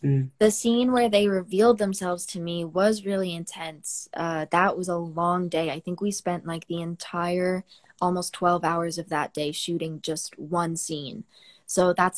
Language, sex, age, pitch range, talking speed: English, female, 20-39, 160-180 Hz, 175 wpm